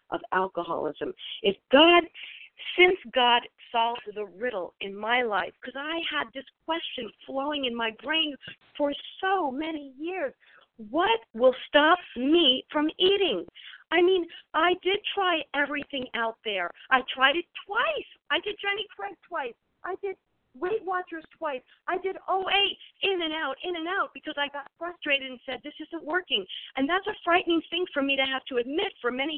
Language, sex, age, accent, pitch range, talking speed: English, female, 50-69, American, 255-355 Hz, 170 wpm